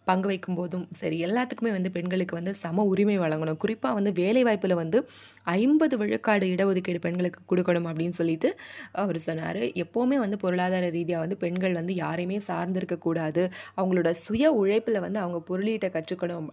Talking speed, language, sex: 150 wpm, Tamil, female